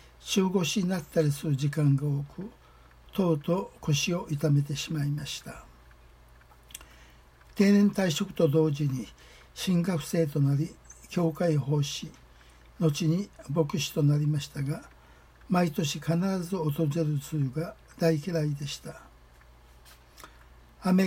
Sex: male